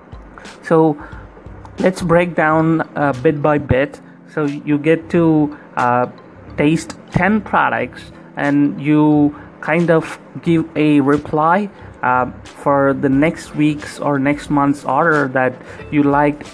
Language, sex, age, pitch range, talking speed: English, male, 30-49, 135-160 Hz, 125 wpm